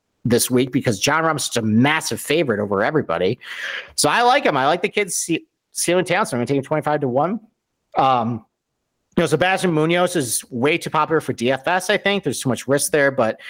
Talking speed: 220 wpm